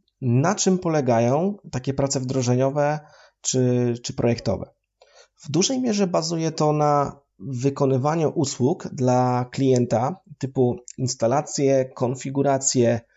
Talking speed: 100 wpm